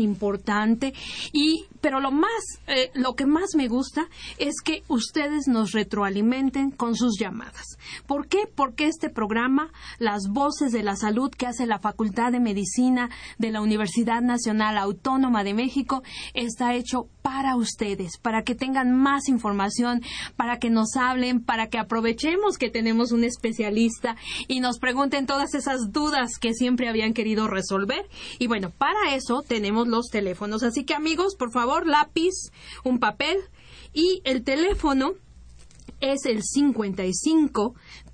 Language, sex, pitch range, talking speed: Spanish, female, 220-275 Hz, 150 wpm